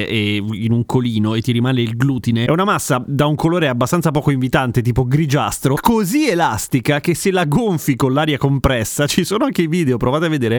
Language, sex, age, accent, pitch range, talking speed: Italian, male, 30-49, native, 130-185 Hz, 210 wpm